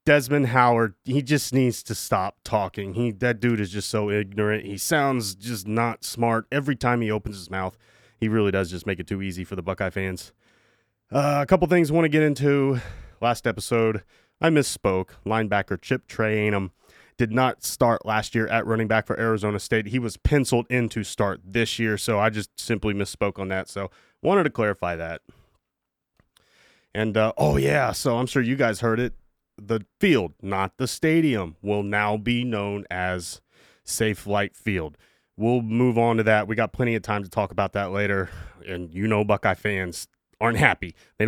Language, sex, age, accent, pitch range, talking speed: English, male, 30-49, American, 100-120 Hz, 190 wpm